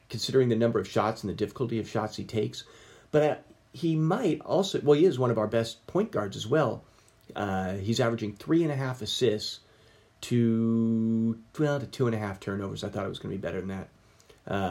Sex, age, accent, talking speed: male, 40-59, American, 220 wpm